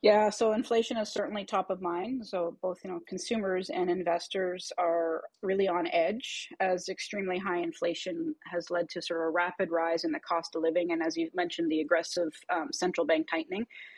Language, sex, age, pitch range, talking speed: English, female, 30-49, 170-205 Hz, 200 wpm